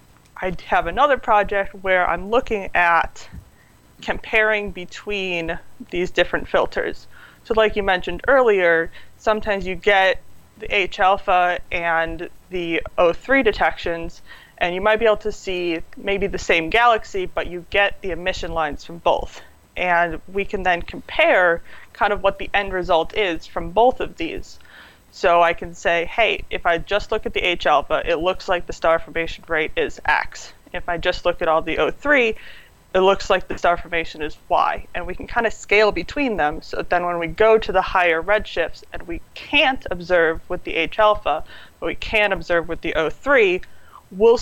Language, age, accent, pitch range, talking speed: English, 20-39, American, 170-210 Hz, 180 wpm